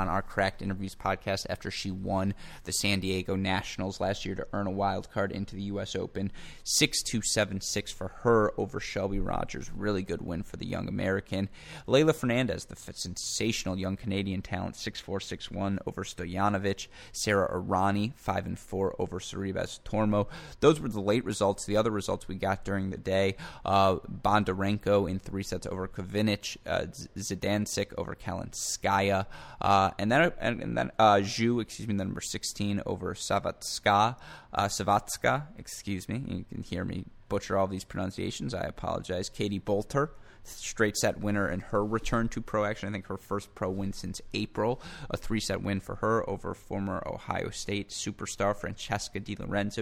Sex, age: male, 20-39